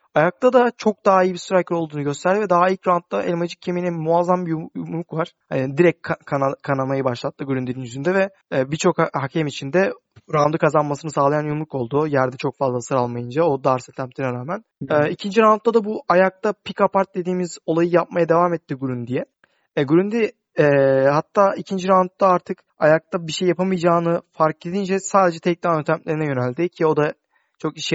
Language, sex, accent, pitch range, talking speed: Turkish, male, native, 140-185 Hz, 175 wpm